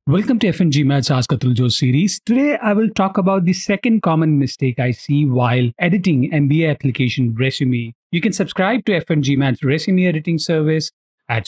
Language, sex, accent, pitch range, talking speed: English, male, Indian, 130-175 Hz, 165 wpm